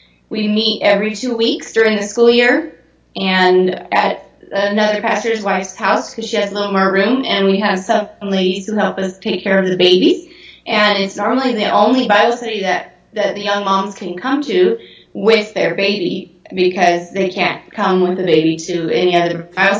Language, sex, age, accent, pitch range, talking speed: English, female, 20-39, American, 185-225 Hz, 195 wpm